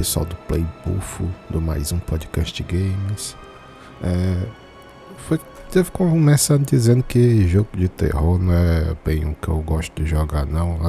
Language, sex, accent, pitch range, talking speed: Portuguese, male, Brazilian, 80-95 Hz, 160 wpm